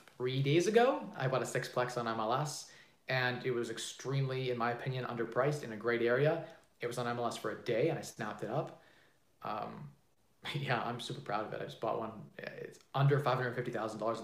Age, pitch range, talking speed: 30-49, 115-145 Hz, 200 wpm